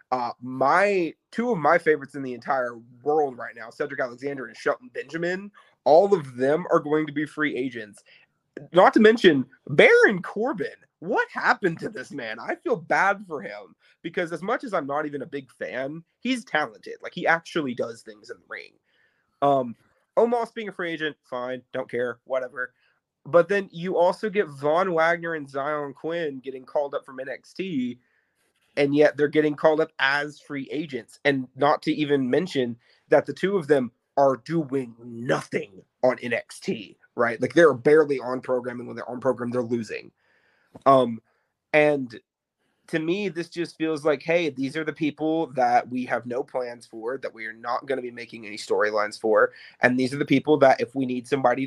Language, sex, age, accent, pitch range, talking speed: English, male, 30-49, American, 125-165 Hz, 190 wpm